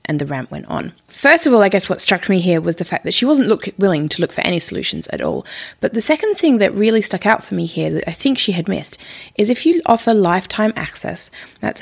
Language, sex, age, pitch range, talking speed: English, female, 20-39, 165-225 Hz, 265 wpm